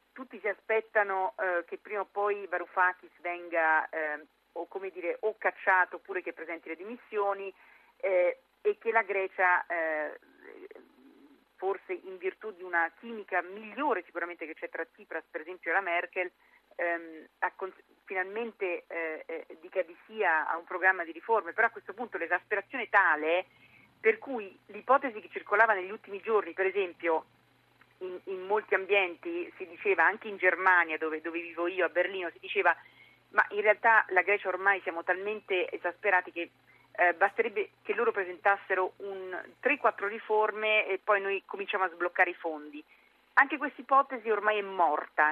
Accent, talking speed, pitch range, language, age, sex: native, 160 wpm, 175-225 Hz, Italian, 40-59, female